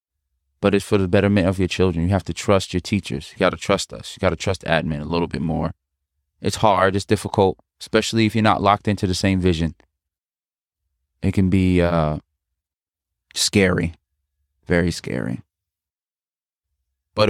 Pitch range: 80-105 Hz